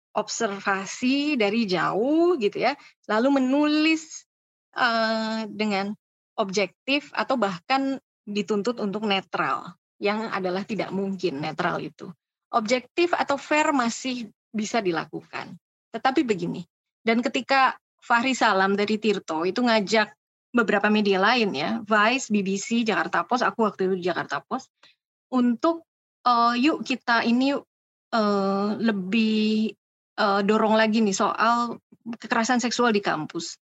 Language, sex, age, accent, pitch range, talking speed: Indonesian, female, 20-39, native, 200-255 Hz, 120 wpm